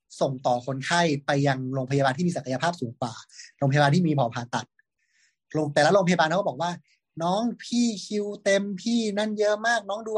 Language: Thai